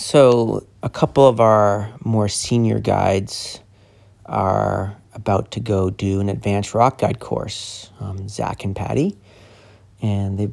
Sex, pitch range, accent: male, 100-115 Hz, American